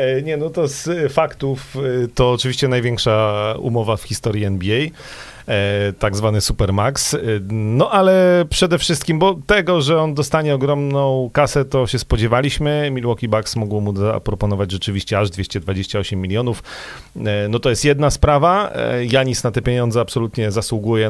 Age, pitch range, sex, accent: 40-59, 105-135 Hz, male, native